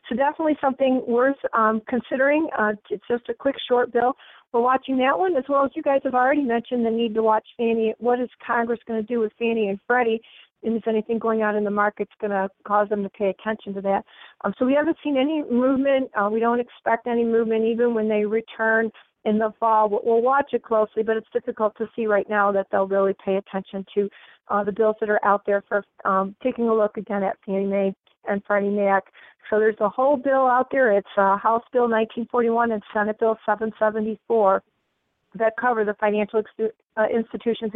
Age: 40-59